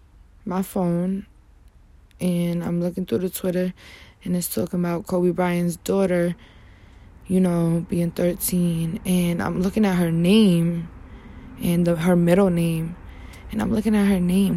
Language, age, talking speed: English, 20-39, 145 wpm